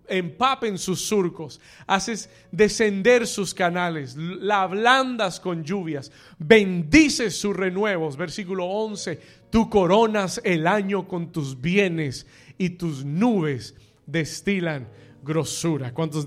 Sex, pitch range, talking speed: male, 150-210 Hz, 105 wpm